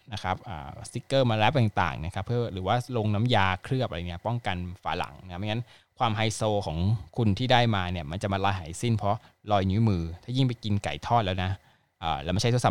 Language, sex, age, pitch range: Thai, male, 20-39, 100-130 Hz